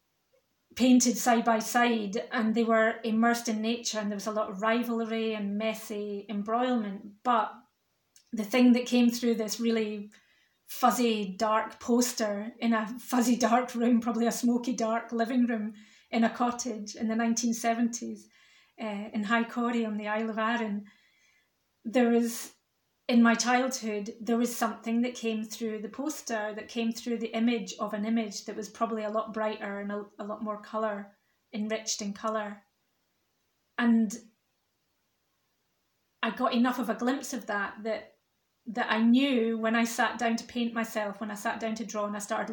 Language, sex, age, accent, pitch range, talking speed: English, female, 30-49, British, 215-235 Hz, 170 wpm